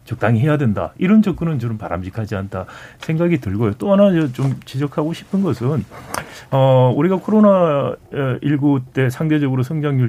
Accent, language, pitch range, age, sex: native, Korean, 115-175 Hz, 40-59, male